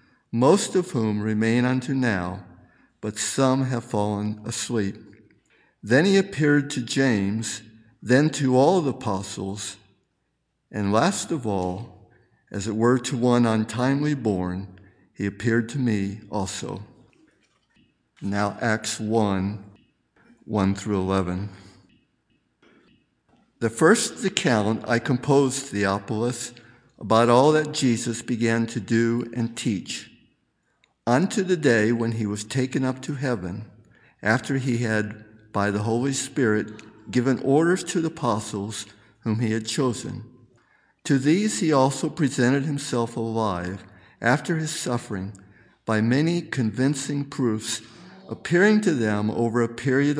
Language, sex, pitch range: English, male, 105-130 Hz